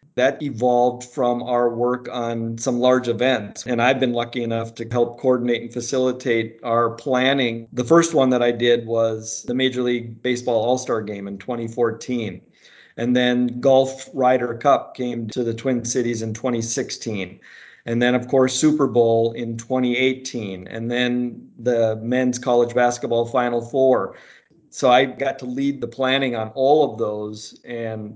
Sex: male